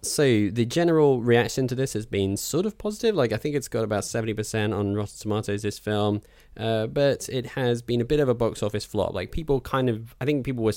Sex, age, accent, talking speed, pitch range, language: male, 10-29, British, 240 wpm, 90-110 Hz, English